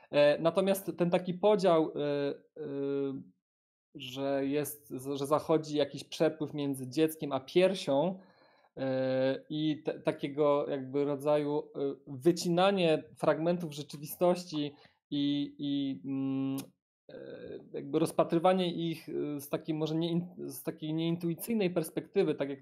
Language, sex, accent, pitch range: Polish, male, native, 130-160 Hz